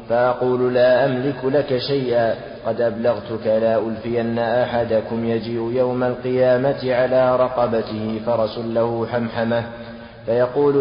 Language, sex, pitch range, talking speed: Arabic, male, 115-125 Hz, 105 wpm